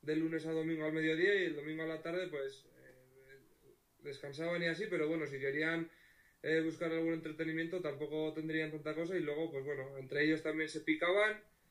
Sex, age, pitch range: male, 20-39, 135-160 Hz